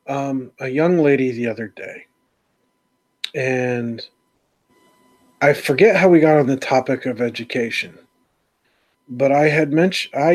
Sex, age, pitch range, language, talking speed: male, 40-59, 125-150 Hz, English, 130 wpm